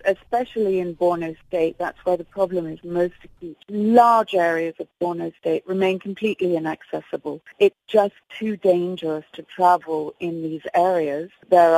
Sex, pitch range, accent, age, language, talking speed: female, 170-195 Hz, British, 40-59, English, 155 wpm